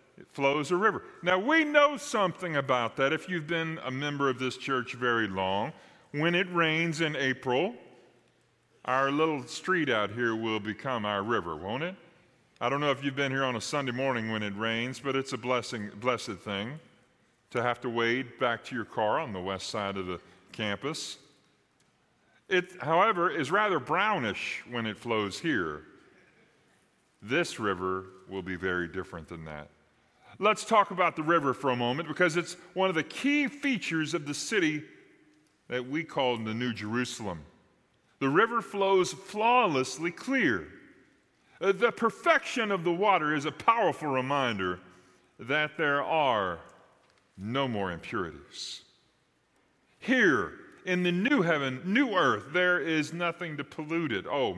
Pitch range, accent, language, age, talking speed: 115-175 Hz, American, English, 40-59, 160 wpm